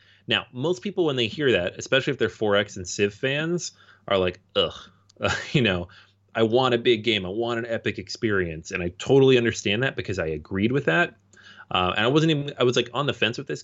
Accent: American